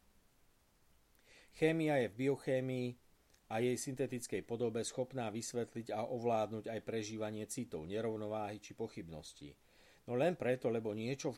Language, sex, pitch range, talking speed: Slovak, male, 100-125 Hz, 125 wpm